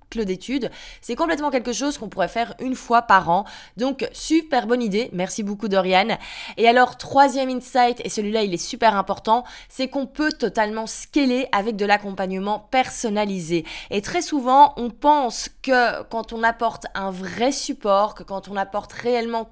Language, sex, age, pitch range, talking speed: French, female, 20-39, 195-250 Hz, 170 wpm